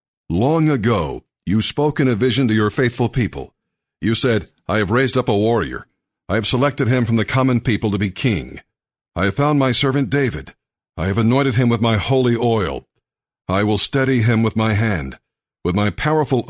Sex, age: male, 50-69